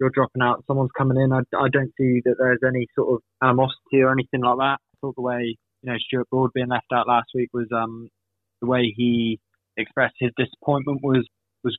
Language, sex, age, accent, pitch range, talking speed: English, male, 20-39, British, 120-135 Hz, 220 wpm